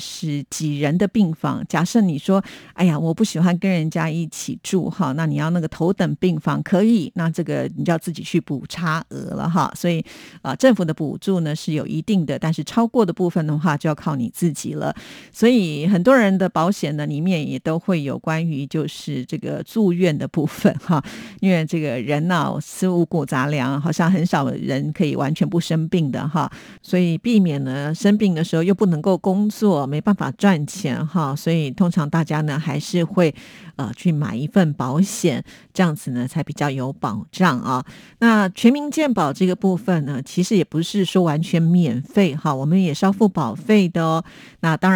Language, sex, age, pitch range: Chinese, female, 50-69, 150-185 Hz